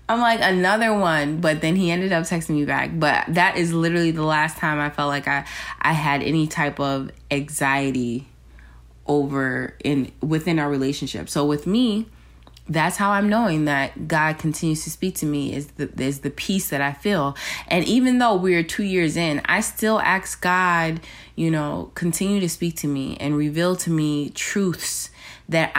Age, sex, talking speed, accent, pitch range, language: 20-39, female, 185 wpm, American, 145-185 Hz, English